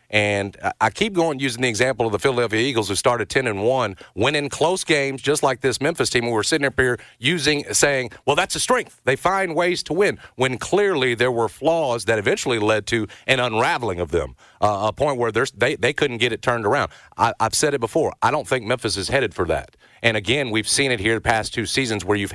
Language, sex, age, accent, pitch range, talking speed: English, male, 40-59, American, 110-140 Hz, 235 wpm